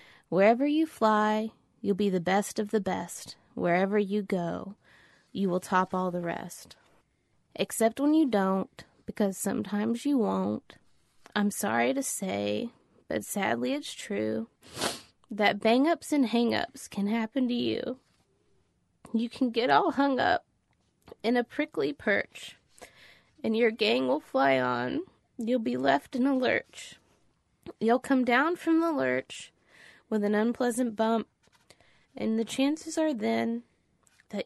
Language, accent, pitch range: English, American, 195-250 Hz